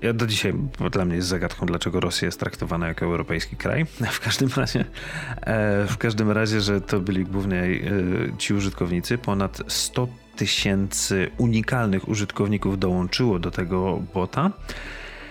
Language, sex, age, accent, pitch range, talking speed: Polish, male, 40-59, native, 90-115 Hz, 140 wpm